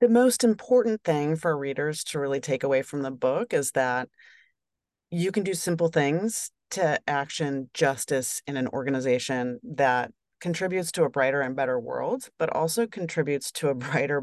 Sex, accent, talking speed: female, American, 170 wpm